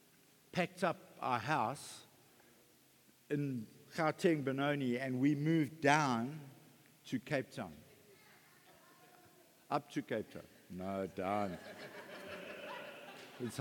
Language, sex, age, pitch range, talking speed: English, male, 60-79, 150-210 Hz, 95 wpm